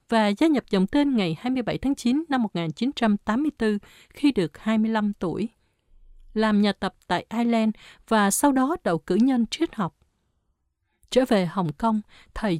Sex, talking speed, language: female, 155 wpm, Vietnamese